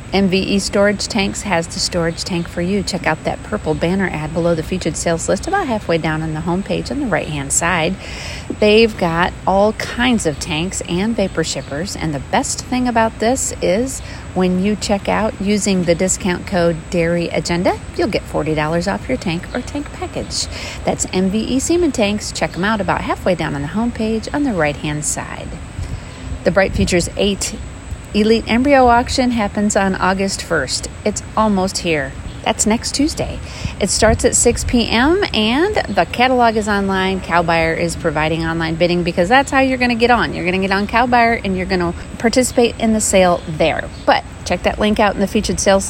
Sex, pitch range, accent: female, 170-225 Hz, American